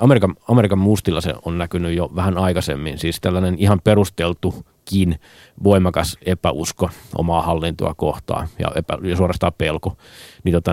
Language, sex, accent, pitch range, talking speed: Finnish, male, native, 85-100 Hz, 140 wpm